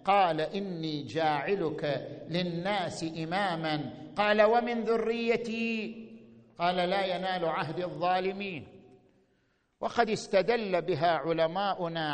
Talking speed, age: 85 wpm, 50-69